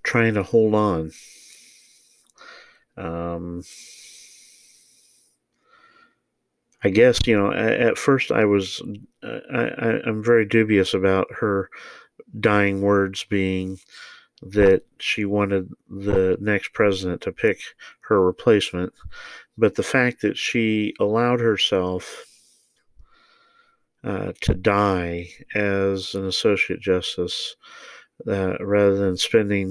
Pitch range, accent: 95-110 Hz, American